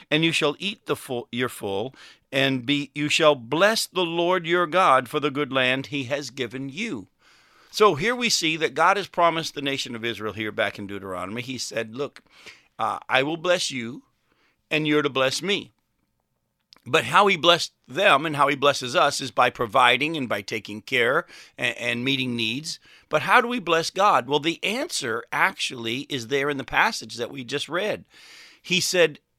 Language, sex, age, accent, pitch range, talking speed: English, male, 50-69, American, 130-175 Hz, 195 wpm